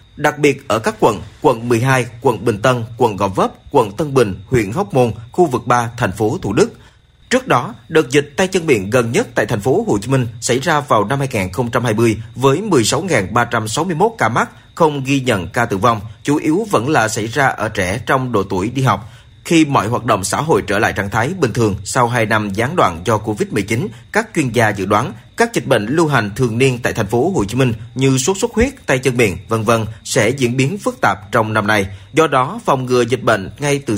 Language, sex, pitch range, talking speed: Vietnamese, male, 110-145 Hz, 230 wpm